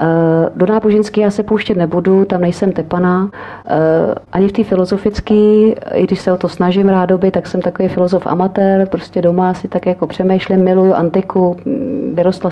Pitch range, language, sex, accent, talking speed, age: 175-205 Hz, Czech, female, native, 165 wpm, 40-59